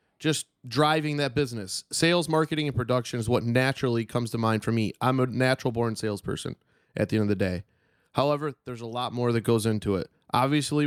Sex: male